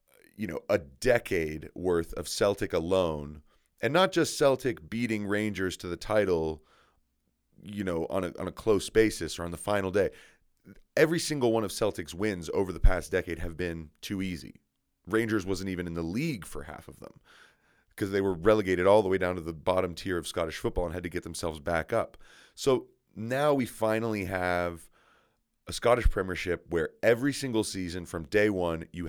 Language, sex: English, male